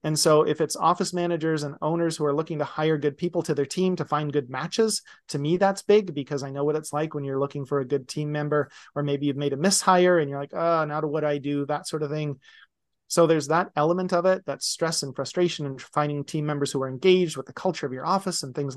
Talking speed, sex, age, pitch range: 265 wpm, male, 30-49, 145-180 Hz